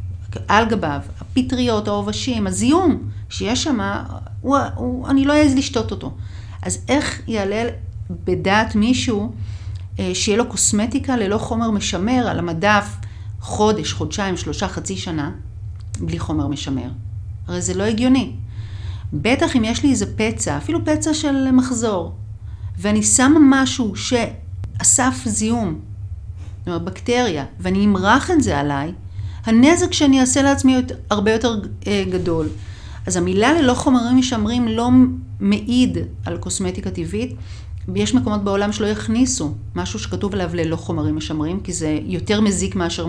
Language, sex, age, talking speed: Hebrew, female, 40-59, 130 wpm